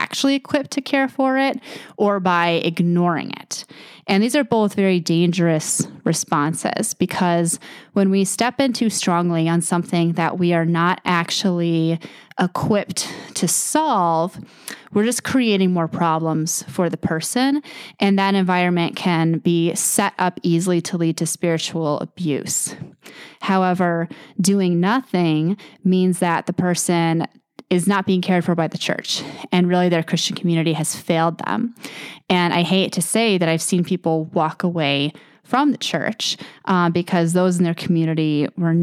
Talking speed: 155 wpm